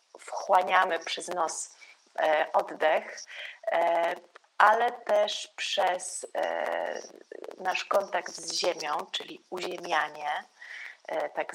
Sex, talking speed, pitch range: female, 75 wpm, 175-210 Hz